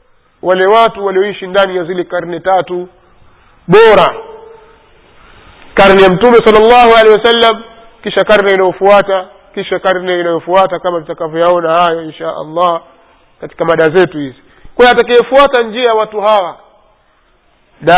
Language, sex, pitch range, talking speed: Swahili, male, 185-225 Hz, 115 wpm